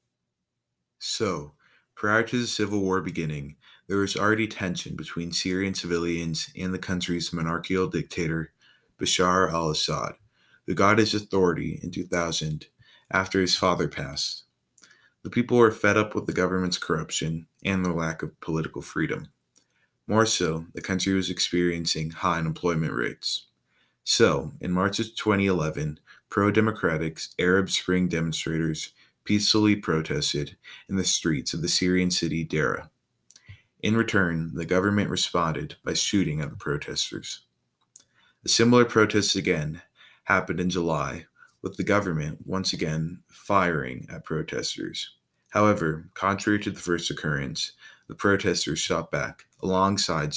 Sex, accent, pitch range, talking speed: male, American, 80-100 Hz, 130 wpm